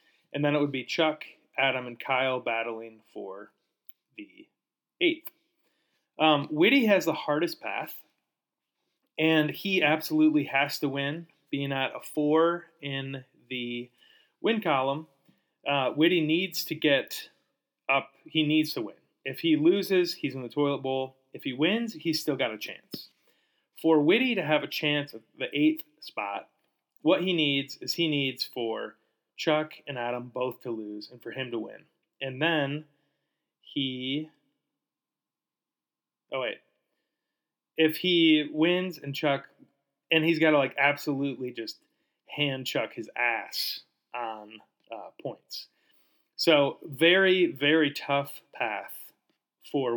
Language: English